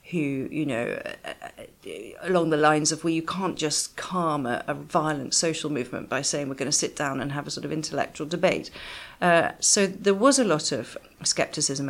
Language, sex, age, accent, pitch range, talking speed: English, female, 40-59, British, 145-175 Hz, 195 wpm